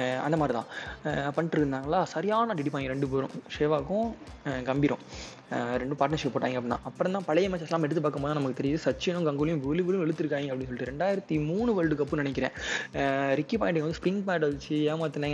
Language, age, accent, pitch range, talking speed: Tamil, 20-39, native, 135-165 Hz, 170 wpm